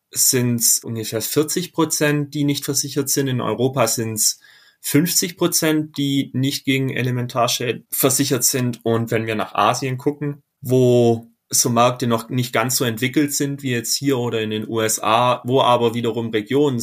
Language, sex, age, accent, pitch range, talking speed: German, male, 30-49, German, 110-140 Hz, 170 wpm